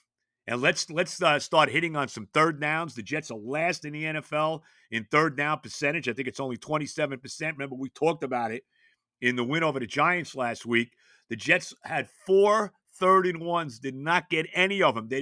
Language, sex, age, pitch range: English, male, 50-69, 130-170 Hz